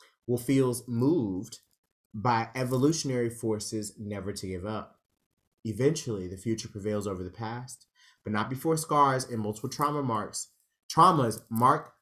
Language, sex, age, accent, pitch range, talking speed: English, male, 30-49, American, 105-135 Hz, 135 wpm